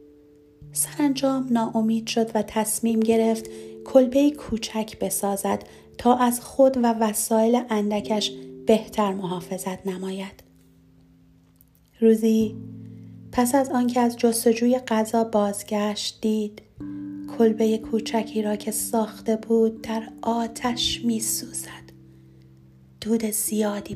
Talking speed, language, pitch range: 95 wpm, Persian, 145-235 Hz